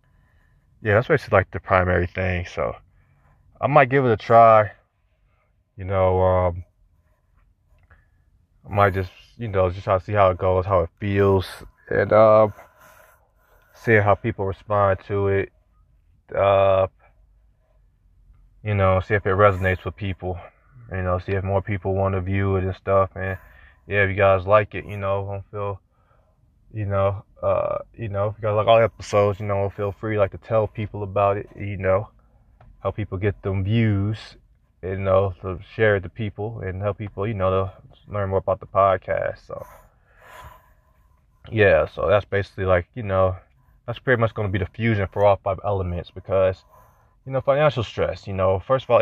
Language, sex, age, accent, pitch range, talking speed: English, male, 20-39, American, 95-110 Hz, 180 wpm